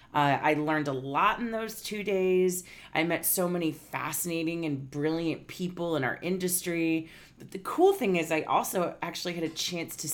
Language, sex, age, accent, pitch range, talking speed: English, female, 30-49, American, 150-195 Hz, 190 wpm